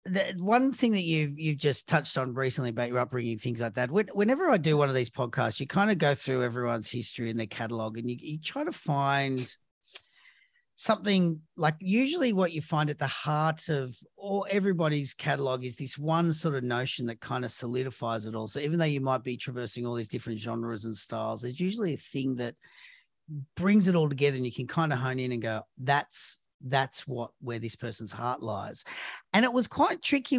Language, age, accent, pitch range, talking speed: English, 40-59, Australian, 125-160 Hz, 215 wpm